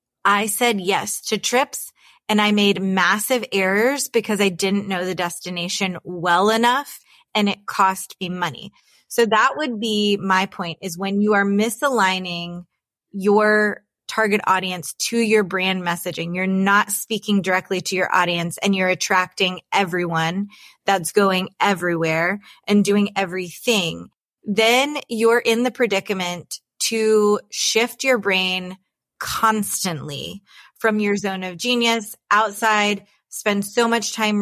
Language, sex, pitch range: English, female, 185-215 Hz